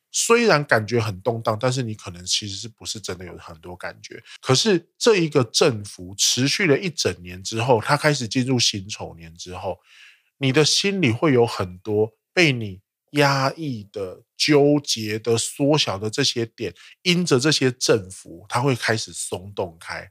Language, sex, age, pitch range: Chinese, male, 20-39, 100-140 Hz